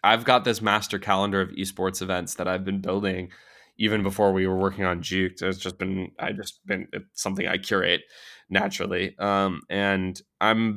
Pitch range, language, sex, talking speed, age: 95-115 Hz, English, male, 185 wpm, 20-39